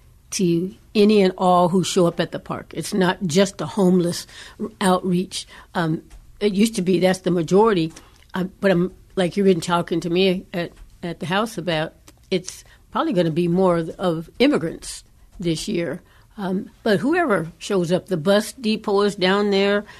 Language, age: English, 60-79